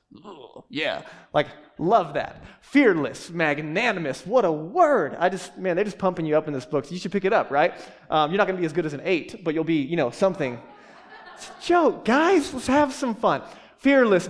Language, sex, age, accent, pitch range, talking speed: English, male, 20-39, American, 155-210 Hz, 215 wpm